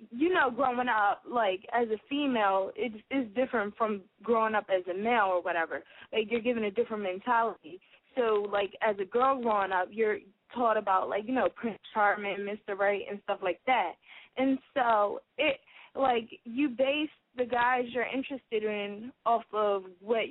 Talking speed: 175 wpm